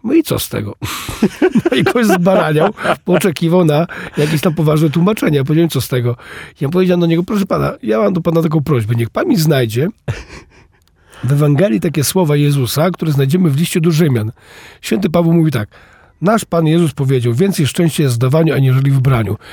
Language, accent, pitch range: Polish, native, 130-170 Hz